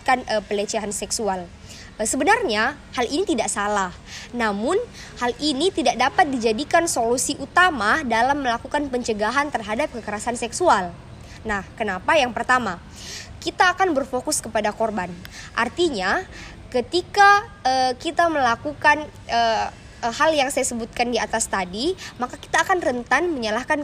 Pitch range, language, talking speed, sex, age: 235-320 Hz, Indonesian, 125 wpm, male, 20-39